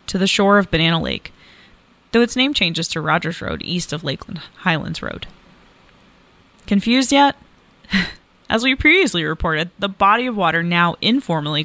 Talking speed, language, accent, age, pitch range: 155 wpm, English, American, 20-39, 165-200 Hz